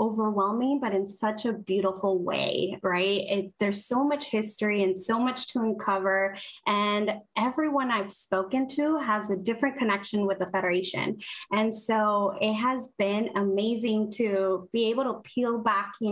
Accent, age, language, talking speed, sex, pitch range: American, 20-39, English, 160 wpm, female, 200-240 Hz